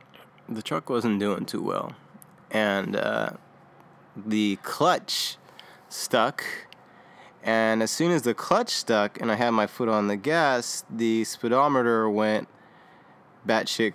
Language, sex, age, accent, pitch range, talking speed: English, male, 20-39, American, 105-125 Hz, 130 wpm